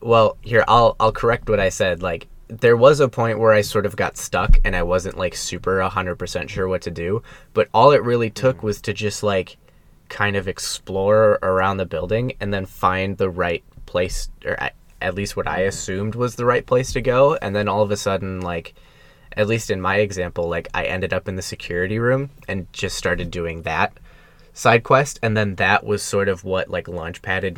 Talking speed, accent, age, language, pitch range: 215 wpm, American, 10-29, English, 95-110 Hz